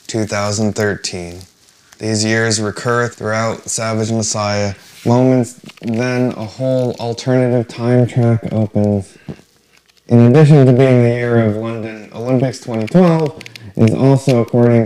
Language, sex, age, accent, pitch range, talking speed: English, male, 20-39, American, 100-120 Hz, 115 wpm